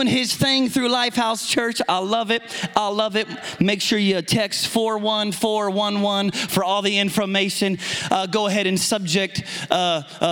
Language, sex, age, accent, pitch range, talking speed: English, male, 30-49, American, 180-220 Hz, 150 wpm